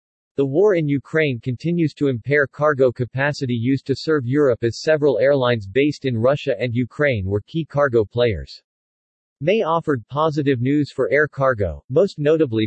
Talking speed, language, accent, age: 160 wpm, English, American, 40-59